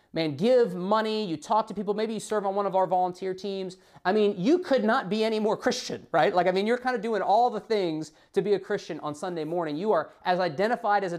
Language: English